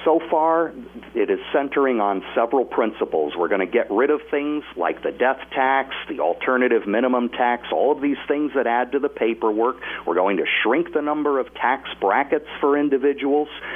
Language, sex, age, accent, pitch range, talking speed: English, male, 50-69, American, 120-150 Hz, 190 wpm